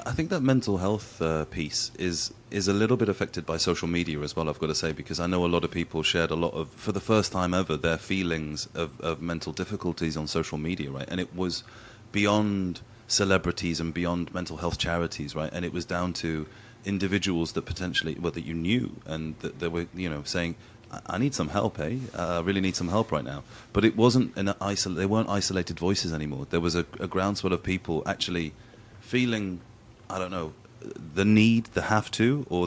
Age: 30-49